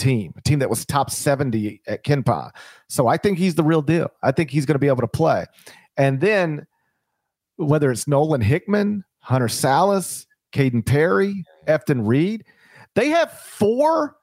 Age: 40-59